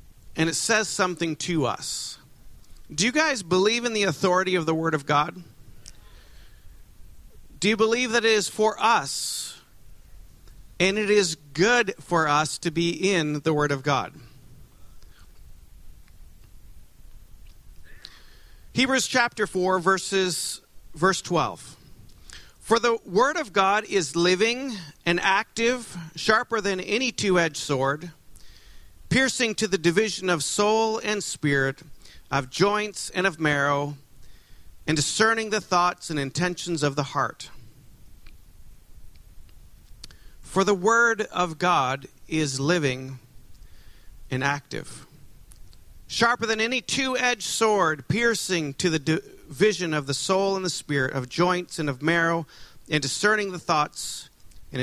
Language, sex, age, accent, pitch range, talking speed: English, male, 40-59, American, 125-195 Hz, 125 wpm